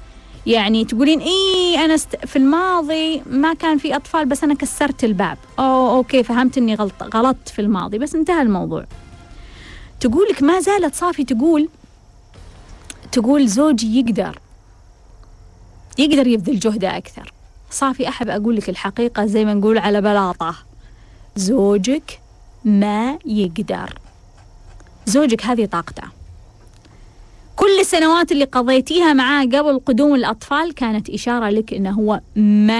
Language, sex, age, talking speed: Arabic, female, 30-49, 120 wpm